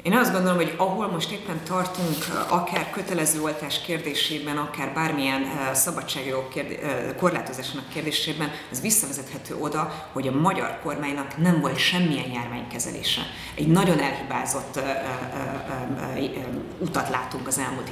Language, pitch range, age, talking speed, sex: Hungarian, 135-165 Hz, 30-49, 135 wpm, female